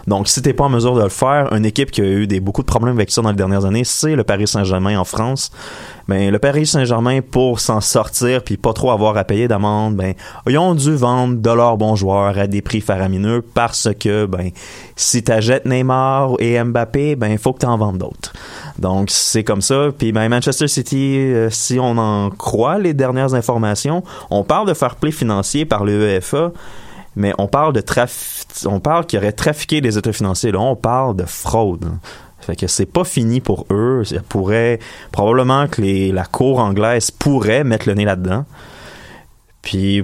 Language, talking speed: French, 200 wpm